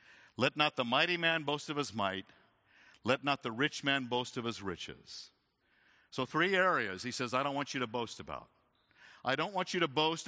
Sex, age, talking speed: male, 50-69, 210 wpm